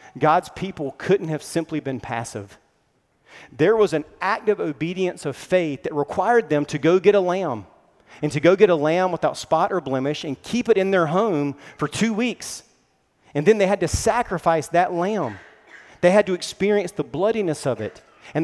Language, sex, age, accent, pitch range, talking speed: English, male, 40-59, American, 135-185 Hz, 190 wpm